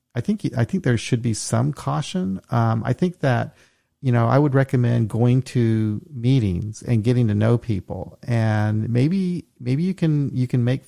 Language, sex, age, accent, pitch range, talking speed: English, male, 40-59, American, 110-135 Hz, 190 wpm